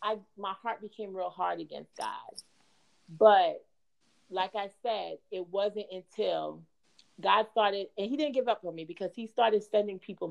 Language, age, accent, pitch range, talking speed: English, 40-59, American, 185-230 Hz, 170 wpm